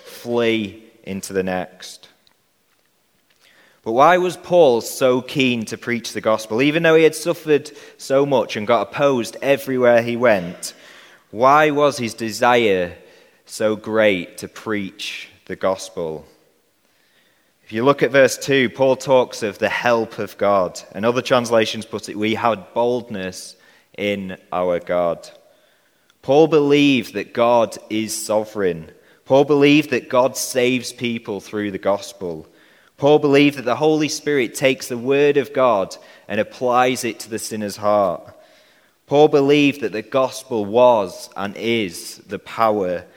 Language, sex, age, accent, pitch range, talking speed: English, male, 30-49, British, 100-130 Hz, 145 wpm